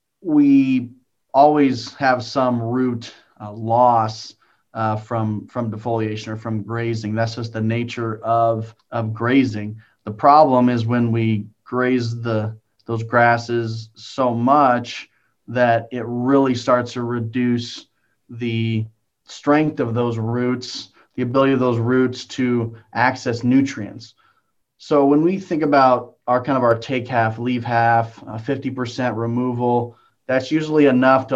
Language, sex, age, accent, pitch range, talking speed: English, male, 30-49, American, 115-125 Hz, 140 wpm